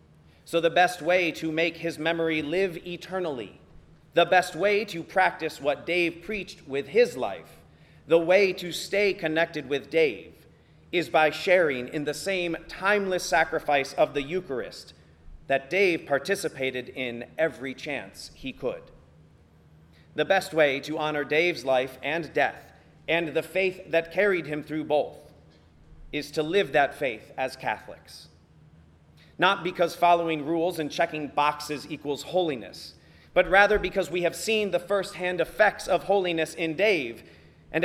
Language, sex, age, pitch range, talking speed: English, male, 40-59, 115-175 Hz, 150 wpm